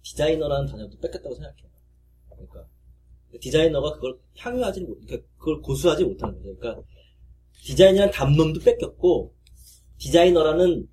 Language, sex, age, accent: Korean, male, 30-49, native